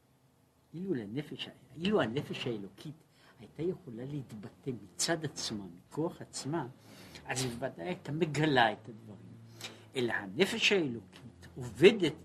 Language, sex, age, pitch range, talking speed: Hebrew, male, 60-79, 120-170 Hz, 110 wpm